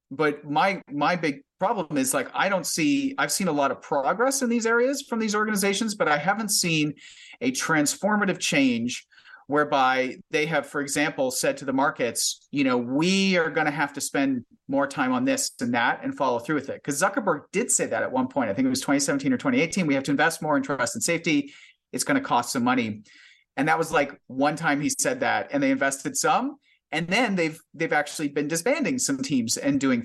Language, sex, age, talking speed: English, male, 40-59, 225 wpm